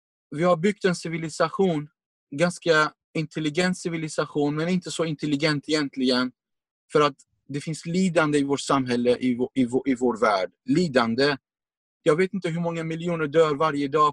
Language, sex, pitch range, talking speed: Swedish, male, 125-165 Hz, 160 wpm